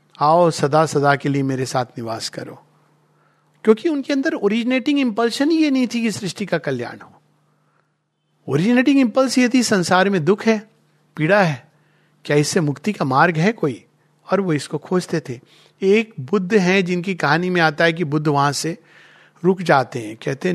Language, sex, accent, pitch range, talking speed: Hindi, male, native, 150-210 Hz, 180 wpm